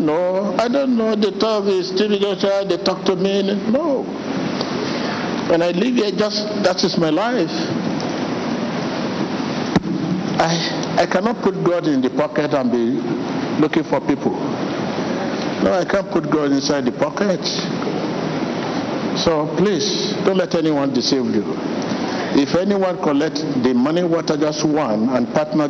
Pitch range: 145-200 Hz